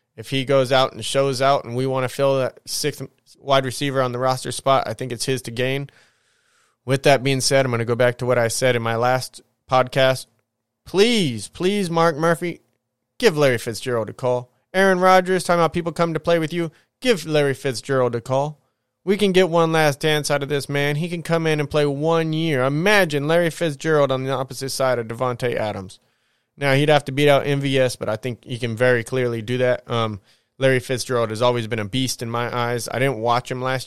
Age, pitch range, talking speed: 20-39, 120-145 Hz, 225 wpm